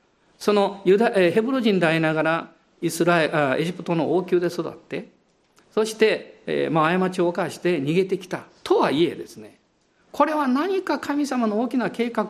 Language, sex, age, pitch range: Japanese, male, 50-69, 170-260 Hz